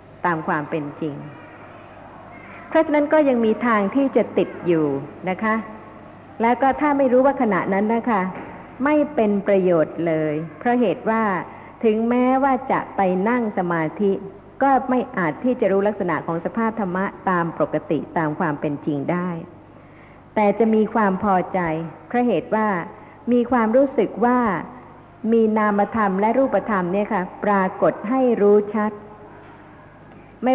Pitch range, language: 180-235 Hz, Thai